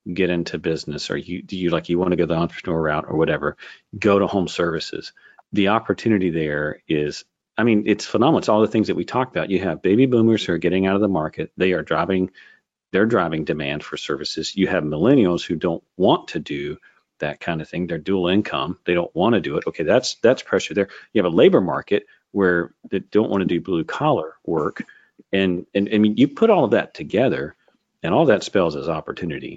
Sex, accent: male, American